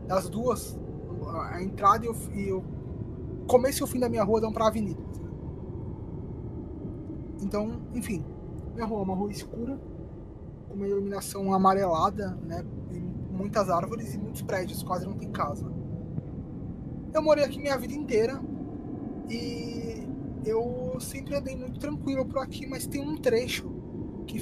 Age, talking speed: 20-39, 150 wpm